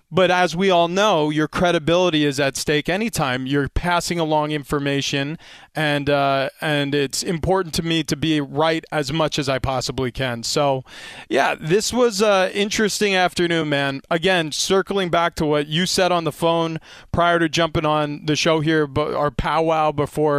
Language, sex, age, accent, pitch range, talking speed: English, male, 20-39, American, 145-170 Hz, 175 wpm